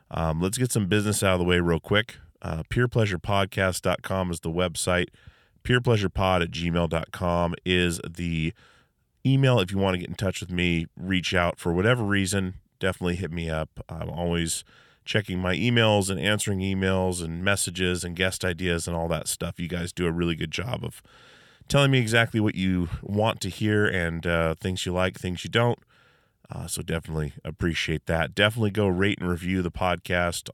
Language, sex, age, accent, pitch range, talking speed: English, male, 30-49, American, 85-105 Hz, 185 wpm